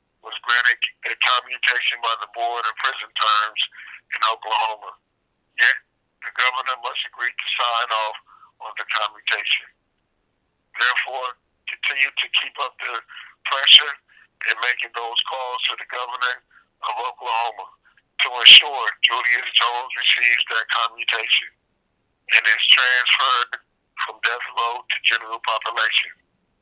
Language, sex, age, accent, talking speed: English, male, 60-79, American, 125 wpm